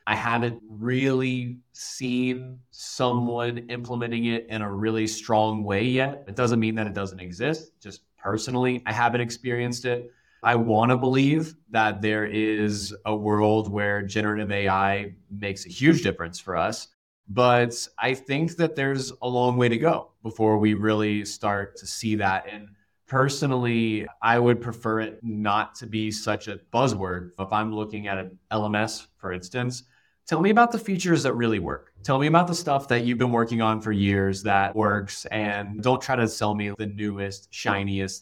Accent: American